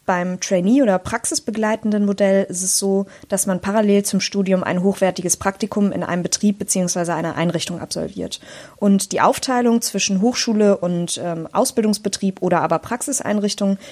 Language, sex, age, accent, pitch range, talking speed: German, female, 20-39, German, 185-225 Hz, 145 wpm